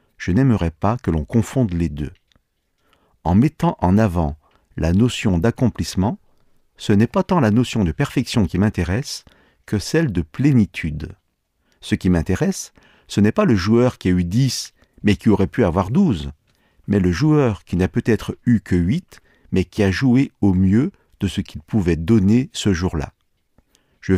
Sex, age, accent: male, 50-69, French